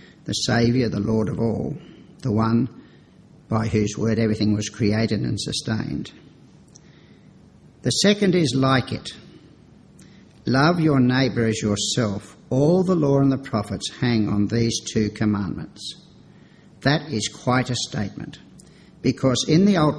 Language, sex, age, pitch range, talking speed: English, male, 60-79, 110-135 Hz, 140 wpm